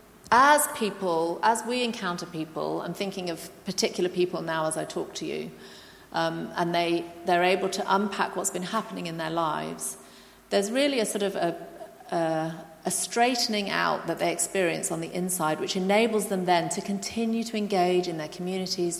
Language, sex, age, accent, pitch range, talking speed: English, female, 40-59, British, 170-205 Hz, 180 wpm